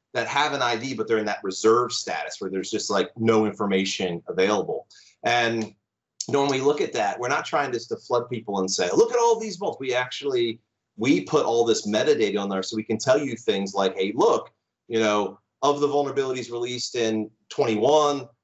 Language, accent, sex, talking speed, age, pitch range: English, American, male, 215 wpm, 30-49, 105-150 Hz